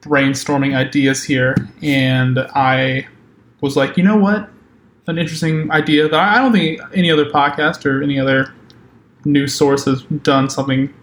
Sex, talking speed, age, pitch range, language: male, 150 wpm, 20-39, 140-165 Hz, English